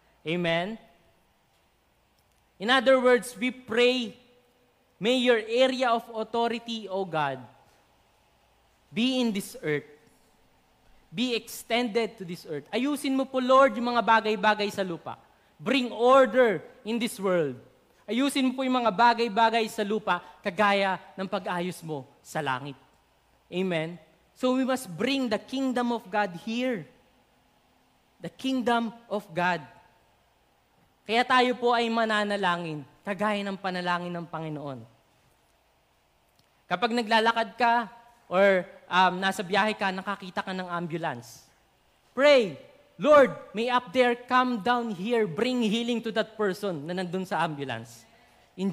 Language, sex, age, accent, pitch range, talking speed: English, male, 20-39, Filipino, 180-245 Hz, 125 wpm